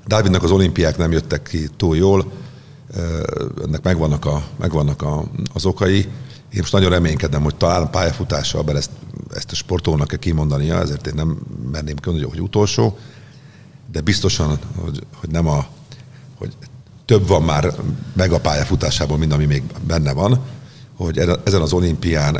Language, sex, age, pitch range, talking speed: Hungarian, male, 50-69, 80-115 Hz, 155 wpm